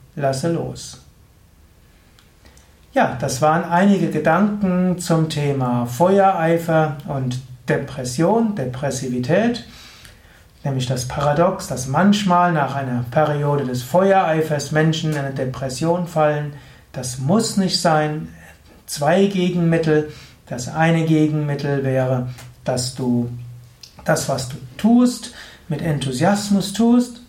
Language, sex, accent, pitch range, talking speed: German, male, German, 135-180 Hz, 105 wpm